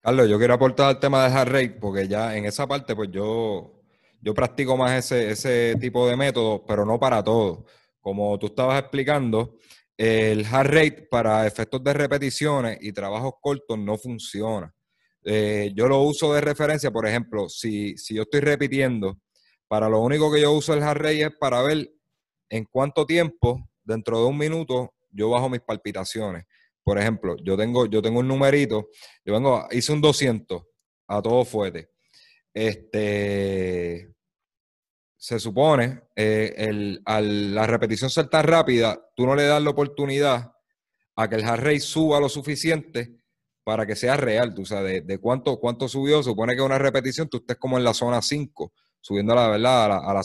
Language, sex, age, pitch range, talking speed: Spanish, male, 30-49, 110-140 Hz, 180 wpm